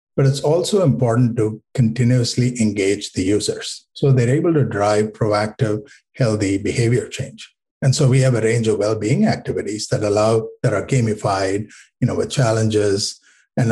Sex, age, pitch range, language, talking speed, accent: male, 50-69, 110-135 Hz, English, 160 wpm, Indian